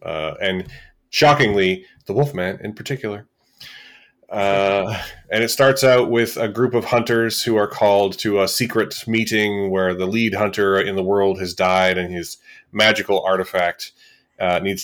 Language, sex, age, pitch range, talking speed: English, male, 30-49, 95-130 Hz, 160 wpm